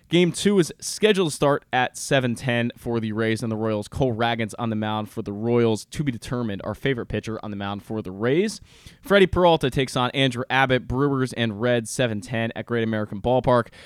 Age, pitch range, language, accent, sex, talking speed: 20-39, 115-135 Hz, English, American, male, 210 wpm